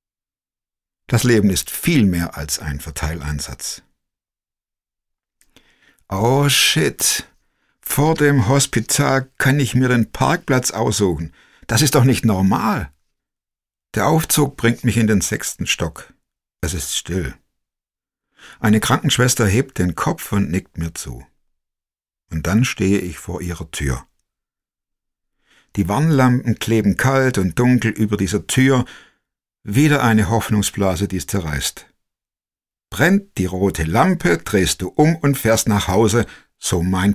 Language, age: German, 60-79